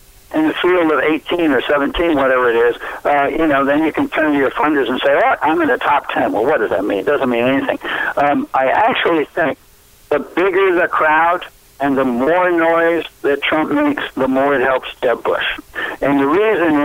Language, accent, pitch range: English, American, 140-220 Hz